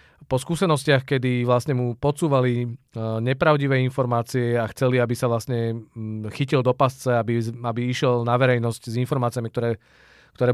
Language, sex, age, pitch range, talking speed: Czech, male, 40-59, 120-135 Hz, 140 wpm